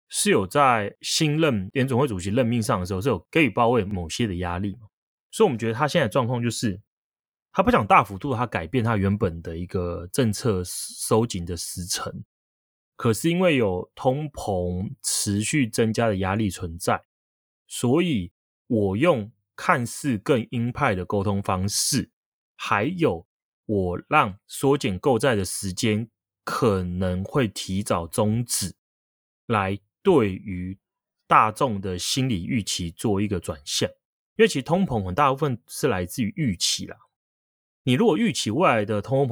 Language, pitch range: Chinese, 90-125 Hz